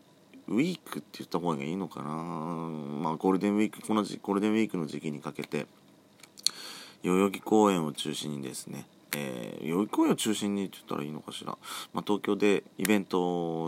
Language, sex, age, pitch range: Japanese, male, 40-59, 75-105 Hz